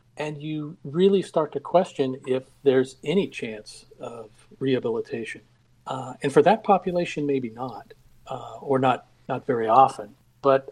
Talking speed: 145 wpm